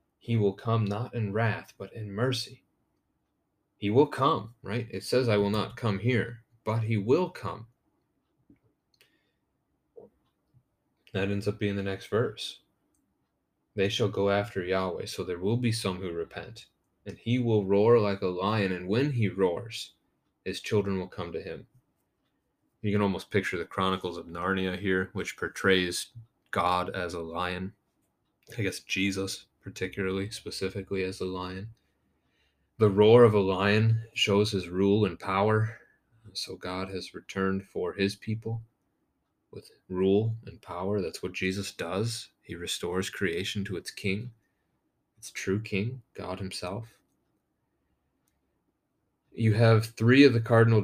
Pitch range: 95-115 Hz